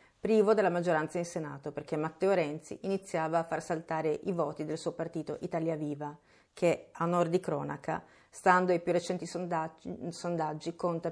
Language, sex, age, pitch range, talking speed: Italian, female, 40-59, 160-180 Hz, 165 wpm